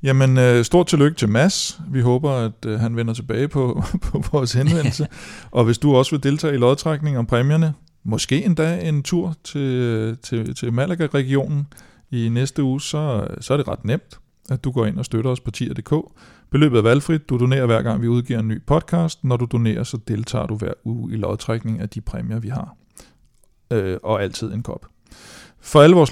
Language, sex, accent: Danish, male, native